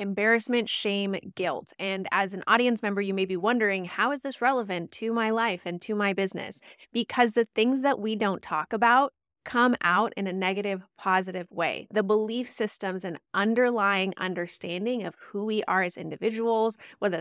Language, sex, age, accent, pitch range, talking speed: English, female, 20-39, American, 195-230 Hz, 180 wpm